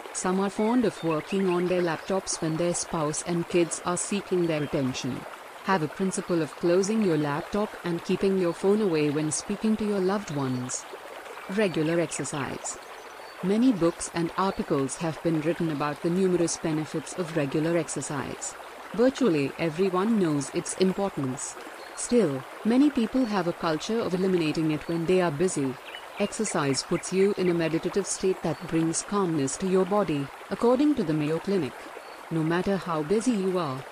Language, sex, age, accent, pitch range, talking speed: Hindi, female, 50-69, native, 160-195 Hz, 165 wpm